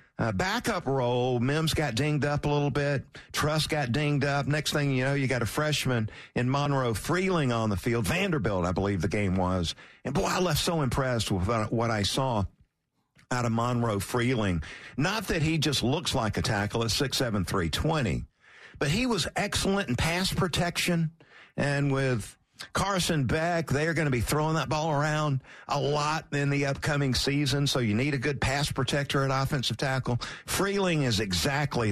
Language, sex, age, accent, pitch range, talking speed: English, male, 50-69, American, 110-150 Hz, 180 wpm